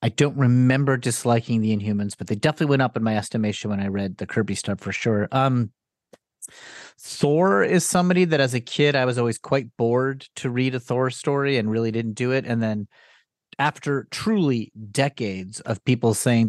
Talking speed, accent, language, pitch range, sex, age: 195 wpm, American, English, 110-140 Hz, male, 30-49